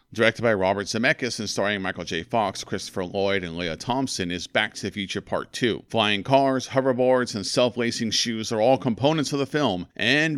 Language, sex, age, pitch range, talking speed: English, male, 40-59, 95-130 Hz, 195 wpm